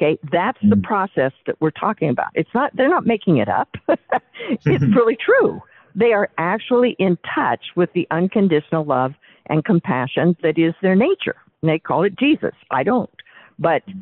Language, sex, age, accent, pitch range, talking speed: English, female, 50-69, American, 160-220 Hz, 175 wpm